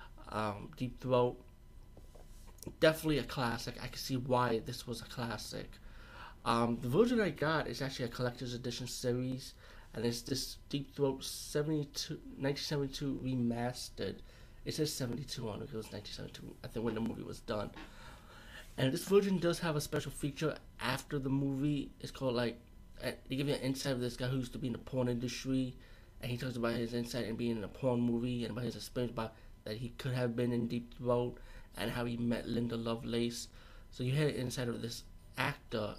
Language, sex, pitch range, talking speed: English, male, 115-135 Hz, 200 wpm